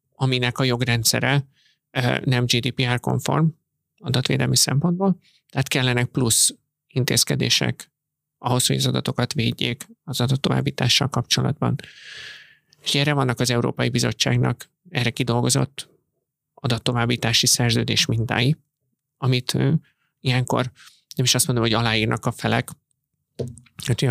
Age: 30-49